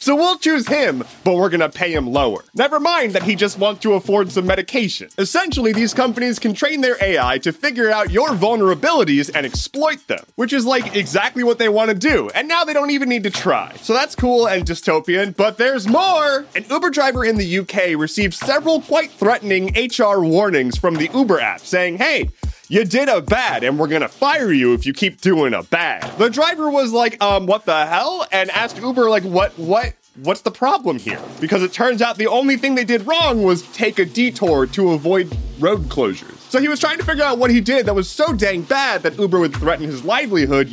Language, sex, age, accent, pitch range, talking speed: English, male, 30-49, American, 185-265 Hz, 220 wpm